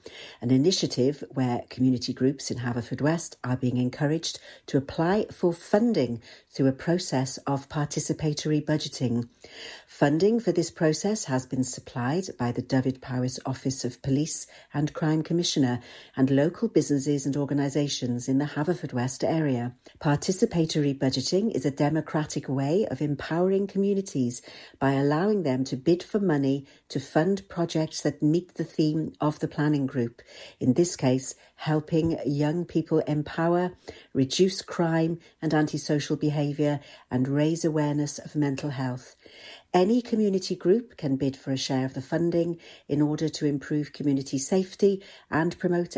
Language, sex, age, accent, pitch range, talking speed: English, female, 60-79, British, 135-170 Hz, 145 wpm